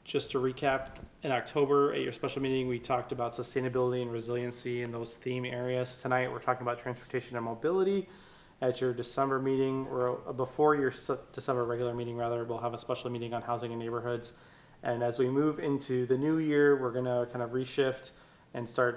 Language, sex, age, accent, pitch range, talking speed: English, male, 20-39, American, 120-130 Hz, 195 wpm